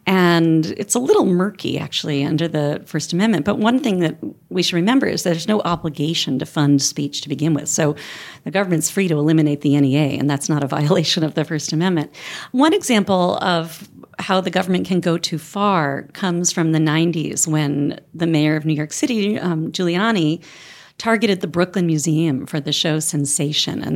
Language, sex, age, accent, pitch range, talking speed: English, female, 40-59, American, 150-185 Hz, 190 wpm